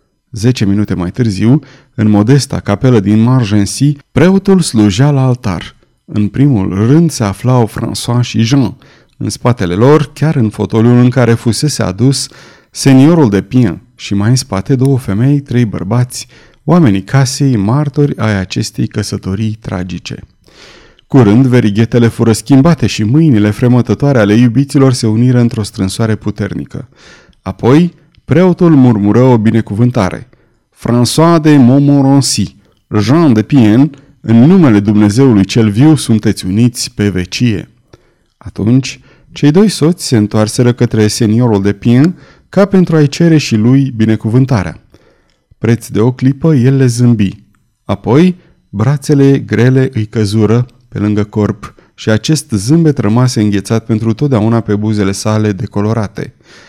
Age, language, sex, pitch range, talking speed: 30-49, Romanian, male, 105-135 Hz, 135 wpm